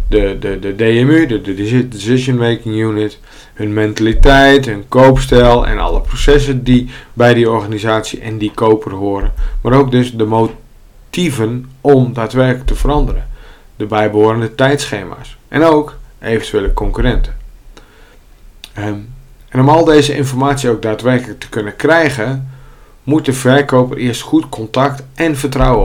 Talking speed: 135 wpm